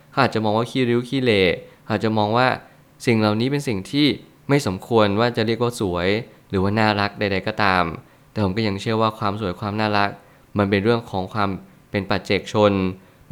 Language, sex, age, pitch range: Thai, male, 20-39, 100-120 Hz